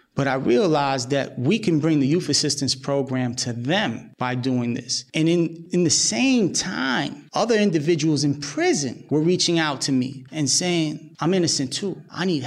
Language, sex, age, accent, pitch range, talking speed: English, male, 30-49, American, 145-205 Hz, 185 wpm